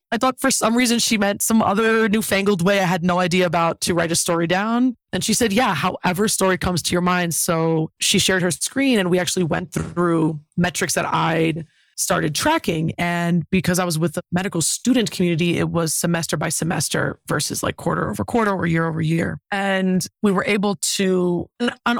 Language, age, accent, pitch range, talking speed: English, 20-39, American, 165-195 Hz, 205 wpm